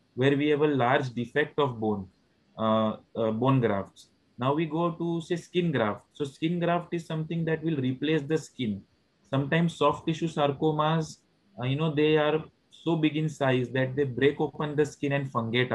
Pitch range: 125-155 Hz